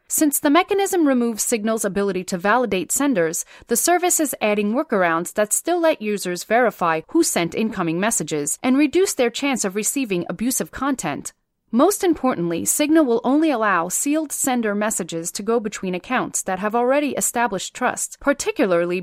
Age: 30-49